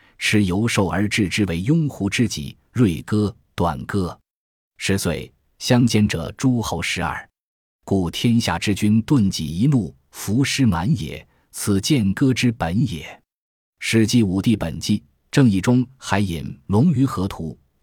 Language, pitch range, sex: Chinese, 85-120 Hz, male